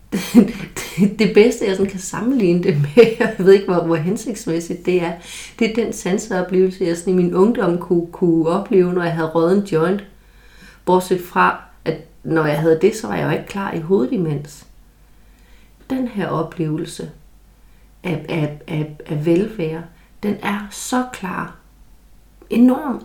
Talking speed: 165 wpm